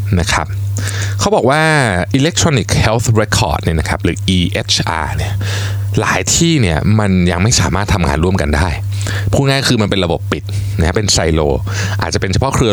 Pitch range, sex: 95-115 Hz, male